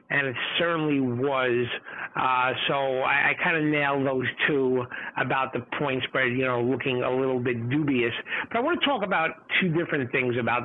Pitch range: 130-180 Hz